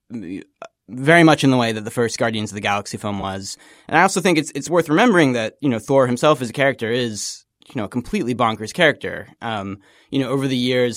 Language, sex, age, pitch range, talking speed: English, male, 20-39, 110-140 Hz, 235 wpm